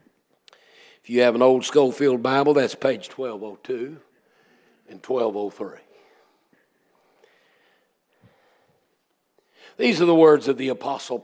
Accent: American